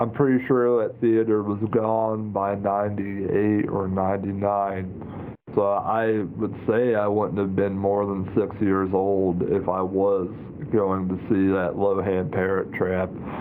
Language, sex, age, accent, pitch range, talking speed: English, male, 40-59, American, 100-115 Hz, 165 wpm